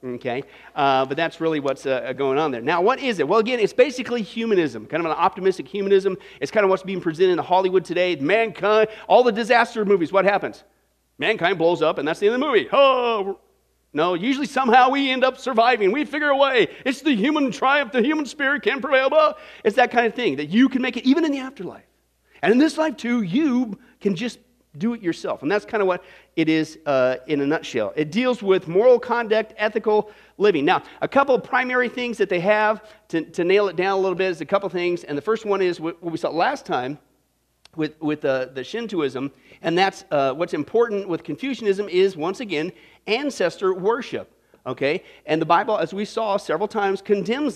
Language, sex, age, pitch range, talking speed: English, male, 40-59, 180-250 Hz, 220 wpm